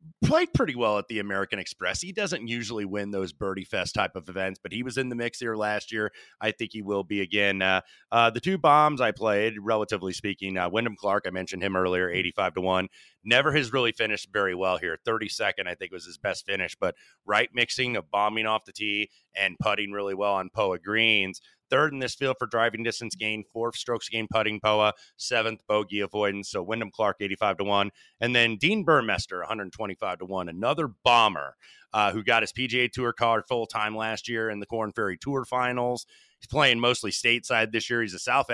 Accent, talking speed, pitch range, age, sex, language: American, 215 wpm, 100-120 Hz, 30-49, male, English